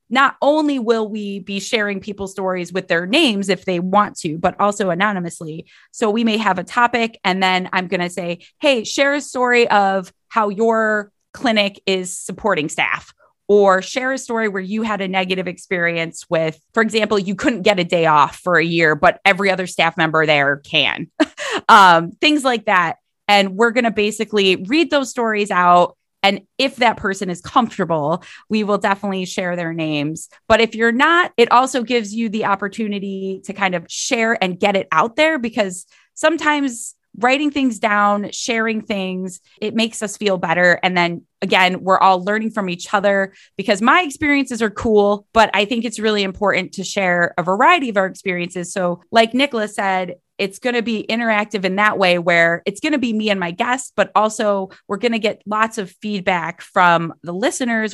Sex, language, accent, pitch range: female, English, American, 185-230 Hz